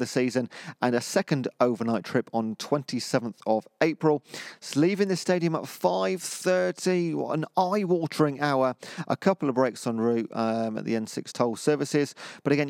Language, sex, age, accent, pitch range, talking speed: English, male, 40-59, British, 115-155 Hz, 165 wpm